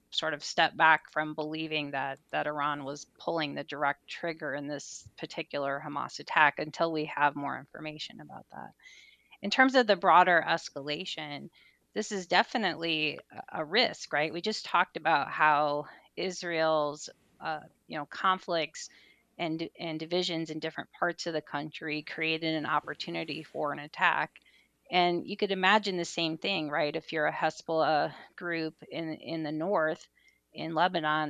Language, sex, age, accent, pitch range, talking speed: English, female, 30-49, American, 150-170 Hz, 155 wpm